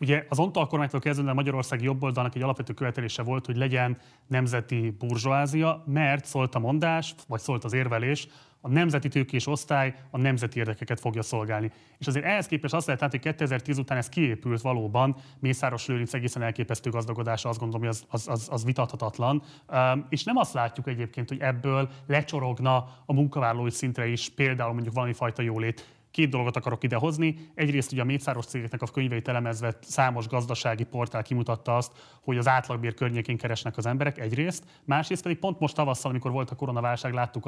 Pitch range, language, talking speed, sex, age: 120-145 Hz, Hungarian, 175 wpm, male, 30-49